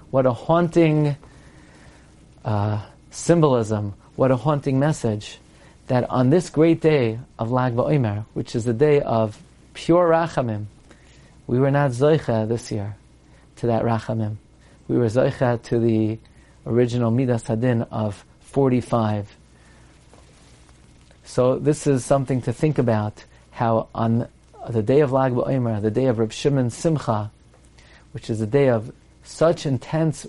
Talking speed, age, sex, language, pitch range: 140 wpm, 40-59, male, English, 110-135 Hz